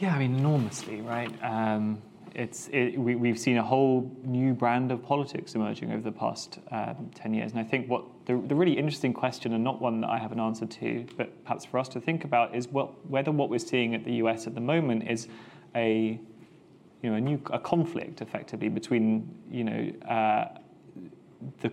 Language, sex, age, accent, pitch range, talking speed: Greek, male, 20-39, British, 110-125 Hz, 205 wpm